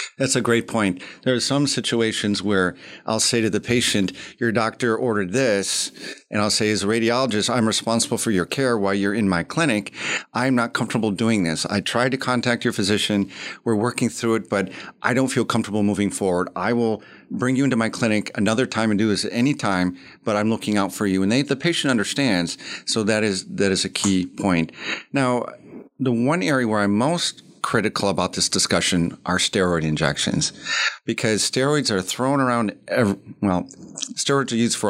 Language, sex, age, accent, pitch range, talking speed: English, male, 50-69, American, 100-120 Hz, 195 wpm